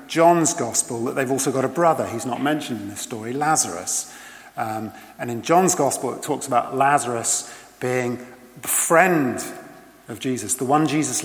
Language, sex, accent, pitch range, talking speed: English, male, British, 140-230 Hz, 170 wpm